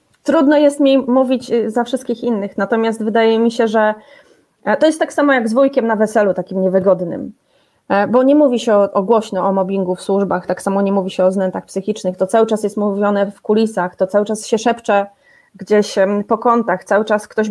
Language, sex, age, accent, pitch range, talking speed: Polish, female, 30-49, native, 205-240 Hz, 205 wpm